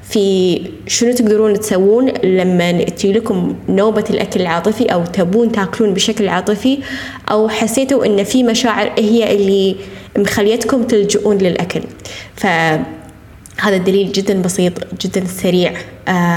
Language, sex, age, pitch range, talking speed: Arabic, female, 10-29, 180-210 Hz, 115 wpm